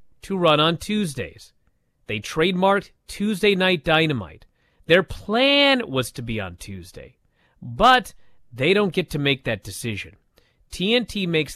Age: 30-49